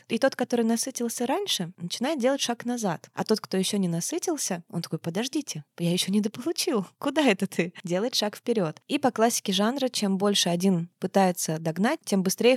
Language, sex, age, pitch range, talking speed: Russian, female, 20-39, 180-220 Hz, 185 wpm